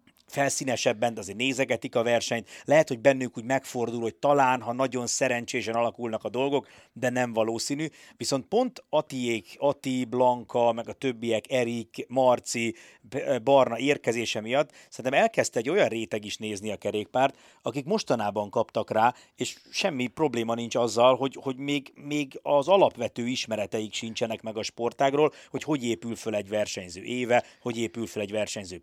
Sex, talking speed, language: male, 160 wpm, Hungarian